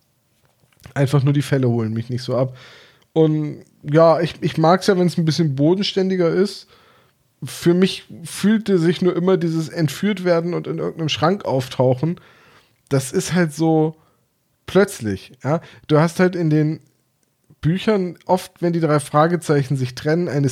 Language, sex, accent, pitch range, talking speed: German, male, German, 130-175 Hz, 165 wpm